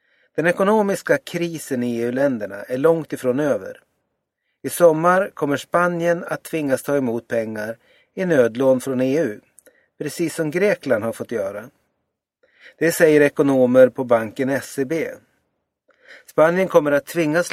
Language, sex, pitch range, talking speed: Swedish, male, 135-180 Hz, 130 wpm